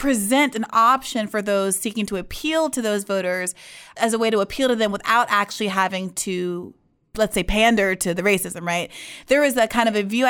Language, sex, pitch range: English, female, 190-235 Hz